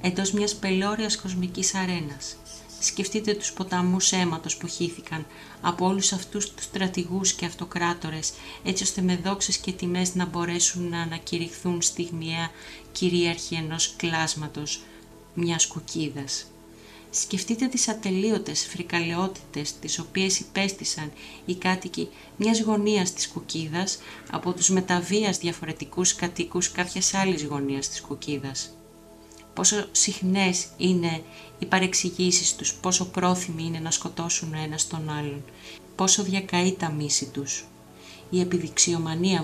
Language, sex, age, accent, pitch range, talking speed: Greek, female, 30-49, native, 155-190 Hz, 120 wpm